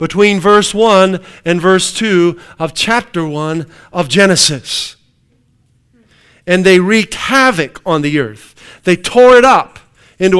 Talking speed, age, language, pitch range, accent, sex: 135 wpm, 50-69, English, 170-225 Hz, American, male